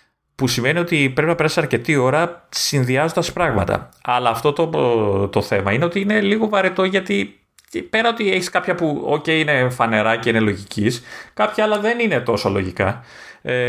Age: 30-49